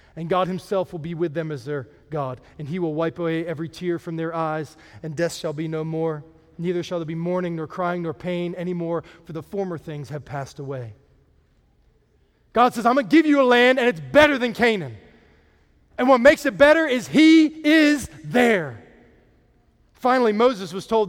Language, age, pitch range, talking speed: English, 20-39, 165-265 Hz, 200 wpm